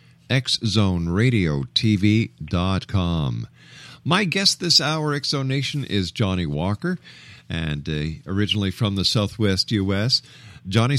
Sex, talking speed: male, 100 wpm